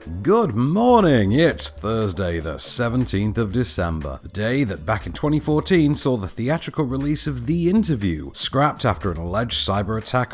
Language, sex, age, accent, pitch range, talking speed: English, male, 40-59, British, 85-135 Hz, 155 wpm